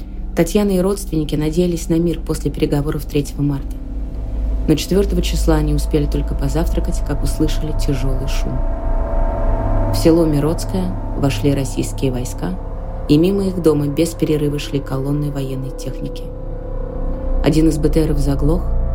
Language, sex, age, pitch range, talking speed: Russian, female, 30-49, 130-165 Hz, 130 wpm